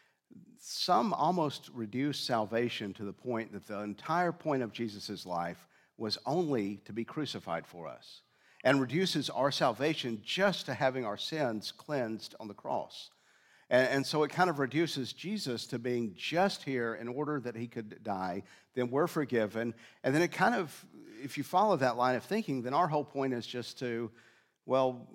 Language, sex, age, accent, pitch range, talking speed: English, male, 50-69, American, 110-140 Hz, 175 wpm